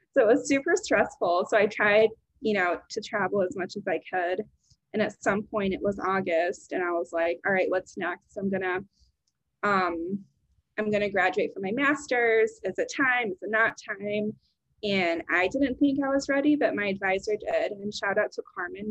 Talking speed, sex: 205 wpm, female